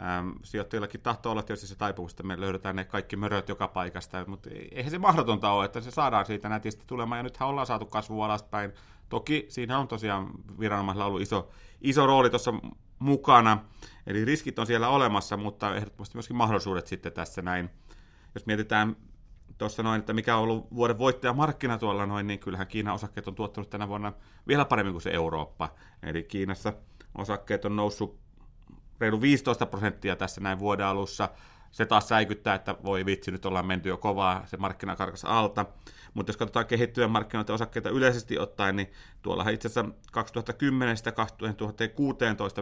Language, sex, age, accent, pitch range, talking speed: Finnish, male, 30-49, native, 95-115 Hz, 165 wpm